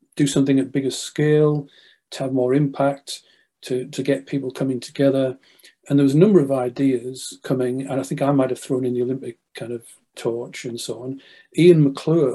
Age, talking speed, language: 40-59, 200 wpm, English